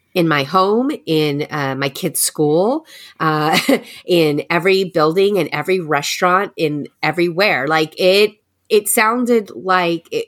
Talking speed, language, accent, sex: 135 wpm, English, American, female